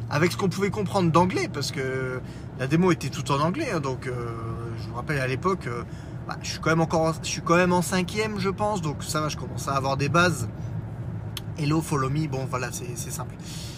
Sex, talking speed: male, 230 wpm